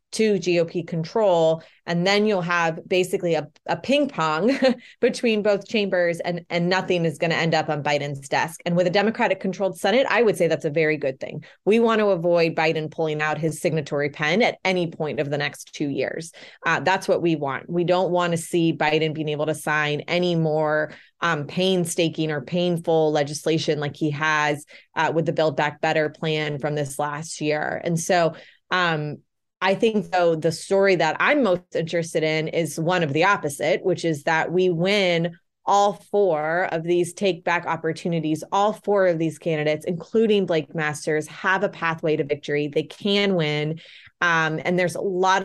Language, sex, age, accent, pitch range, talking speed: English, female, 20-39, American, 155-185 Hz, 190 wpm